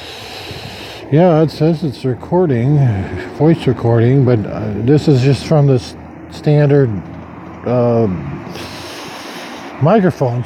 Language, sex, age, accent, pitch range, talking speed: English, male, 50-69, American, 120-160 Hz, 100 wpm